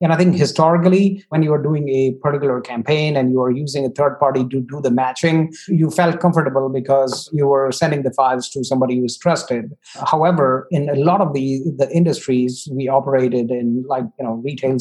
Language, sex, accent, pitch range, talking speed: English, male, Indian, 135-165 Hz, 205 wpm